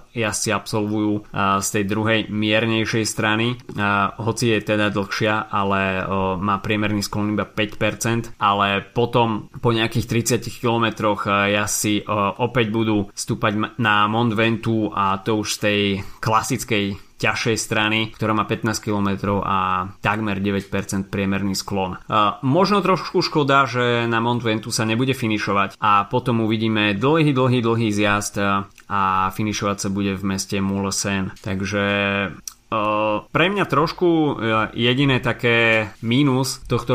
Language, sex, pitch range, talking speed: Slovak, male, 105-120 Hz, 130 wpm